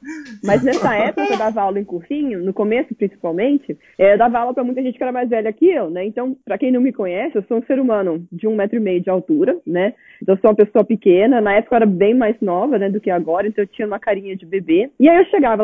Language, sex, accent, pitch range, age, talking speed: Portuguese, female, Brazilian, 205-280 Hz, 20-39, 275 wpm